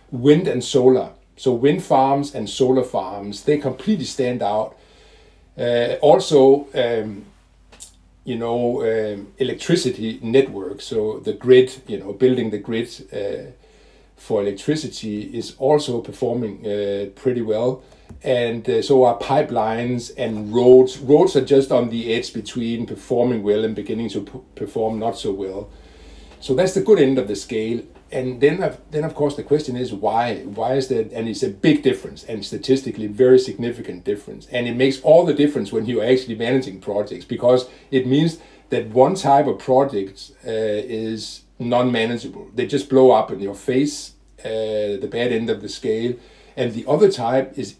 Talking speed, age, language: 170 wpm, 60-79, English